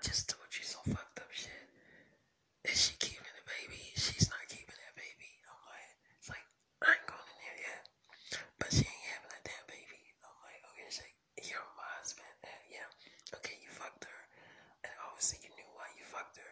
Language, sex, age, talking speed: English, male, 20-39, 200 wpm